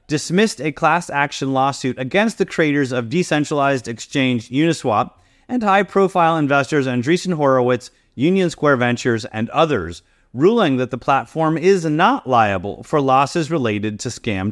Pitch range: 125-165 Hz